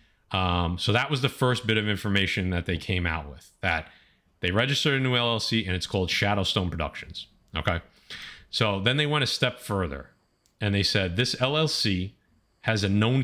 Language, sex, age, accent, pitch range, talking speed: English, male, 40-59, American, 95-120 Hz, 185 wpm